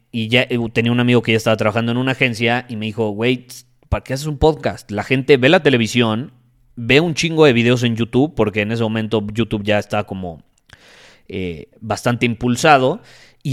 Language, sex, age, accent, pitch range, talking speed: Spanish, male, 30-49, Mexican, 110-150 Hz, 200 wpm